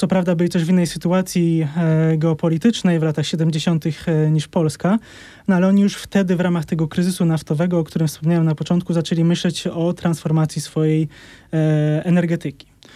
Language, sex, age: Polish, male, 20-39